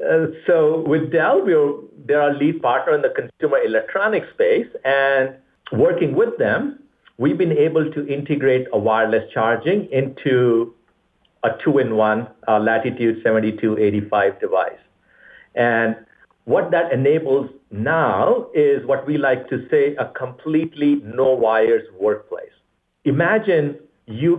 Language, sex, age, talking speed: English, male, 50-69, 120 wpm